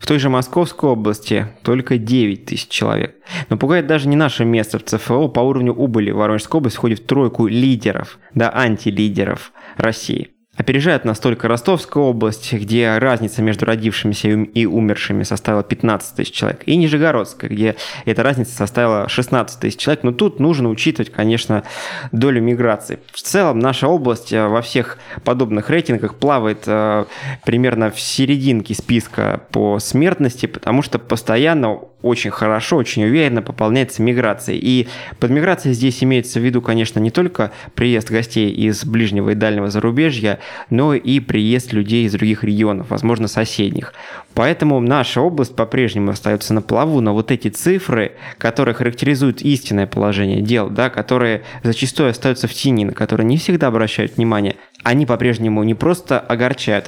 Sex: male